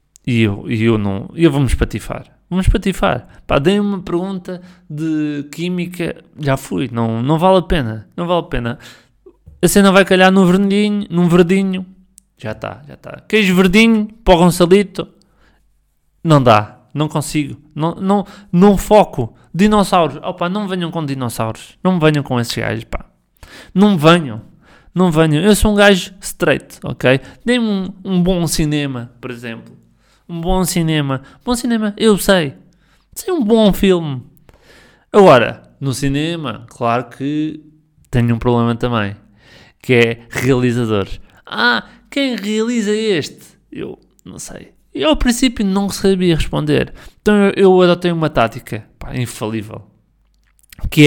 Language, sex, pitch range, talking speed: Portuguese, male, 125-190 Hz, 145 wpm